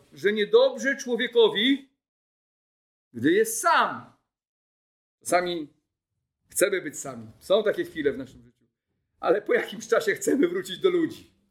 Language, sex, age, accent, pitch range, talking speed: Polish, male, 50-69, native, 195-270 Hz, 125 wpm